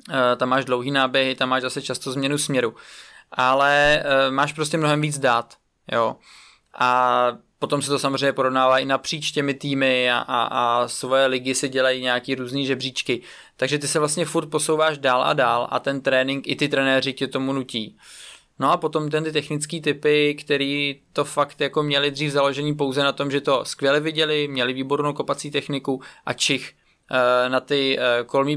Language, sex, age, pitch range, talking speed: Czech, male, 20-39, 130-150 Hz, 185 wpm